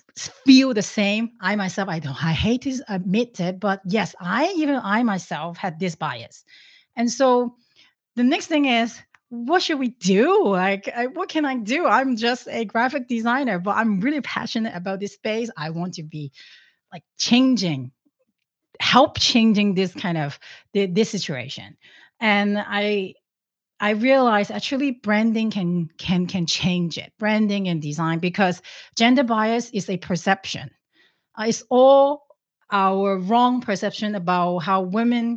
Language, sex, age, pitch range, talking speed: English, female, 30-49, 190-250 Hz, 155 wpm